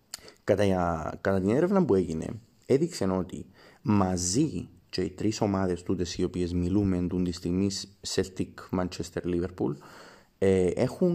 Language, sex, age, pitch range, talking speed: Greek, male, 30-49, 90-110 Hz, 130 wpm